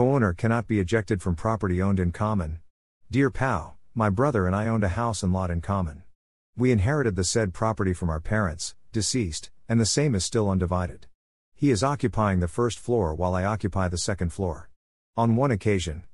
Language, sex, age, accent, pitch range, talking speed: English, male, 50-69, American, 90-115 Hz, 195 wpm